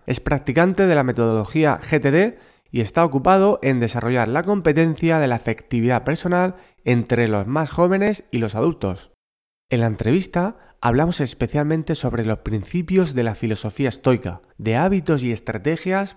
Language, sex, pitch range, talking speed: Spanish, male, 115-165 Hz, 150 wpm